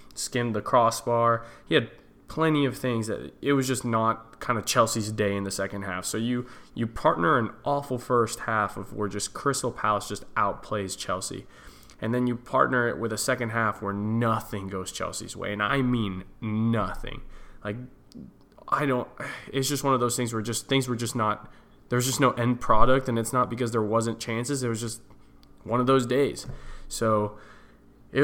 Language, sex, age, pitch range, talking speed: English, male, 20-39, 105-120 Hz, 195 wpm